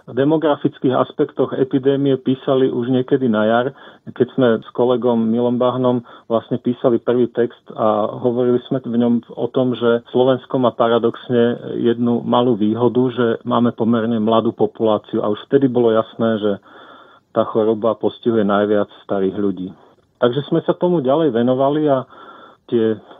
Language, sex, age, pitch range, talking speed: Slovak, male, 40-59, 115-125 Hz, 150 wpm